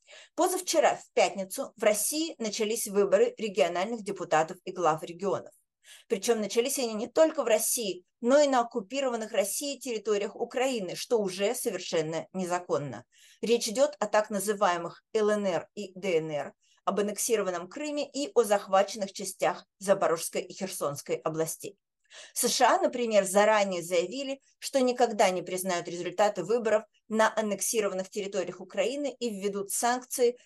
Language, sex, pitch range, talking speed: Russian, female, 185-240 Hz, 130 wpm